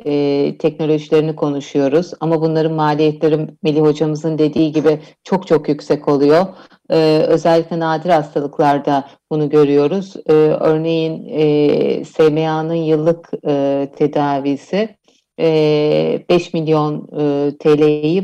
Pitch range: 155-210 Hz